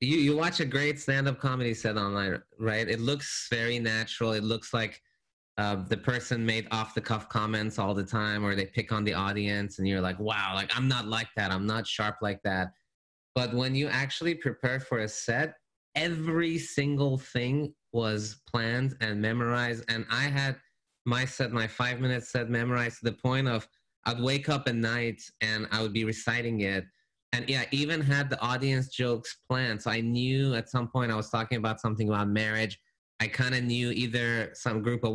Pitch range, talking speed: 110-135 Hz, 195 wpm